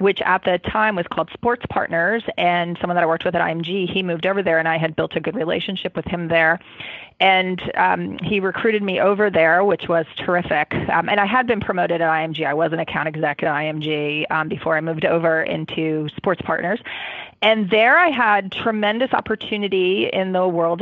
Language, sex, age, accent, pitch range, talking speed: English, female, 30-49, American, 165-195 Hz, 210 wpm